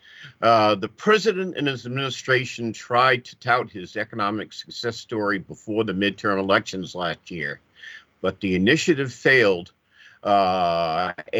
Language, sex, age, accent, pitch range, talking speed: English, male, 50-69, American, 105-135 Hz, 125 wpm